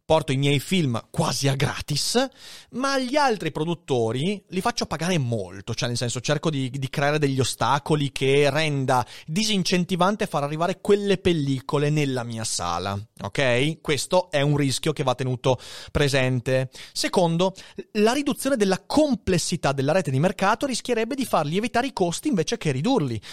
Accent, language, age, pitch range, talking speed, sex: native, Italian, 30-49, 130-190 Hz, 155 wpm, male